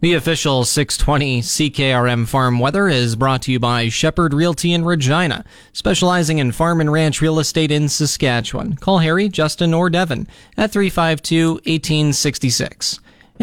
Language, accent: English, American